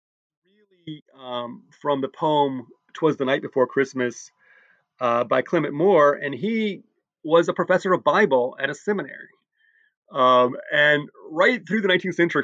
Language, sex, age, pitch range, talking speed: English, male, 30-49, 135-180 Hz, 145 wpm